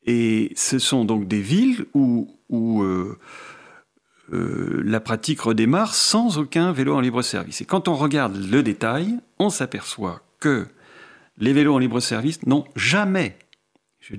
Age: 40-59